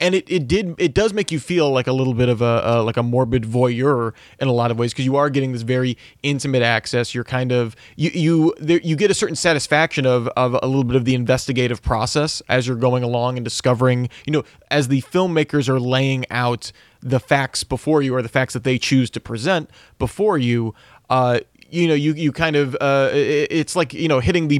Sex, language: male, English